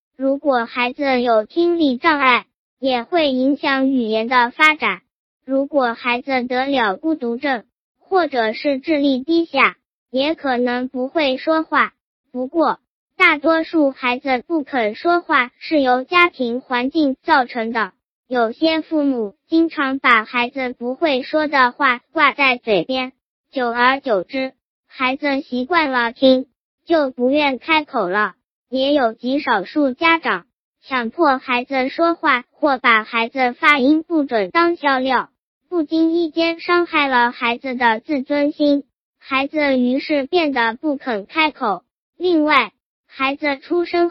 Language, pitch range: Chinese, 245-305 Hz